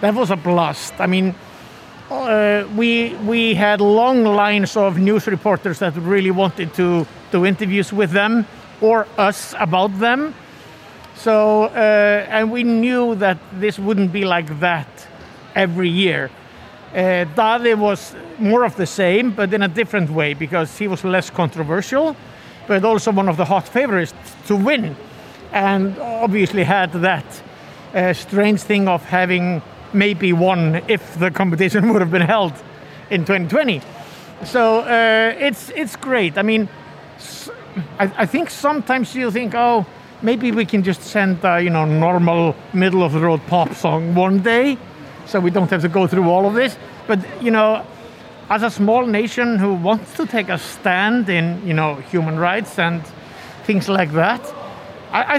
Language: English